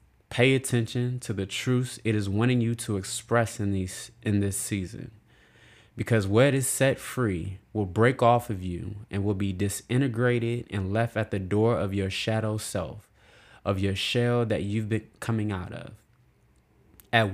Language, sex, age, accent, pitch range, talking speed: English, male, 20-39, American, 100-120 Hz, 170 wpm